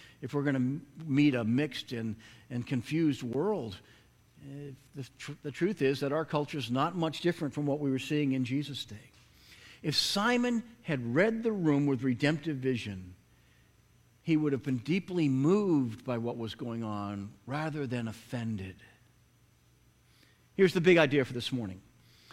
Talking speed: 160 wpm